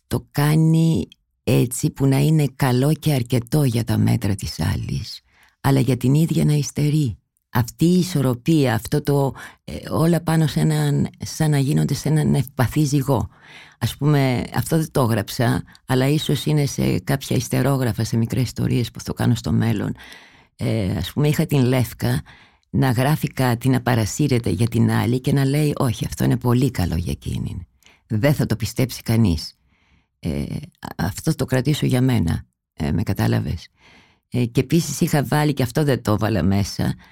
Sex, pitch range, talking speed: female, 105-145 Hz, 170 wpm